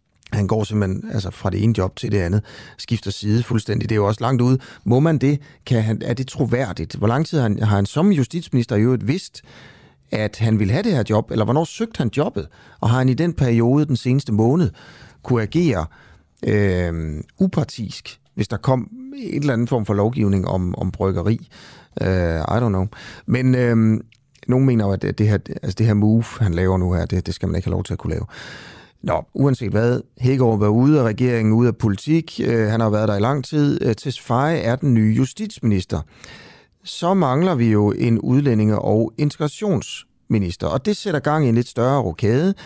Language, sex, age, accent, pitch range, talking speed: Danish, male, 30-49, native, 100-135 Hz, 210 wpm